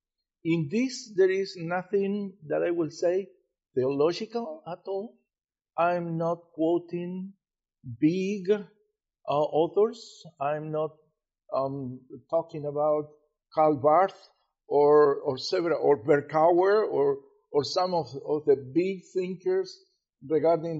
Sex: male